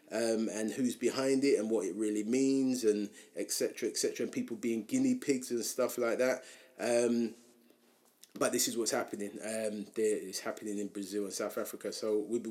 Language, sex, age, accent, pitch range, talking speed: English, male, 20-39, British, 105-130 Hz, 190 wpm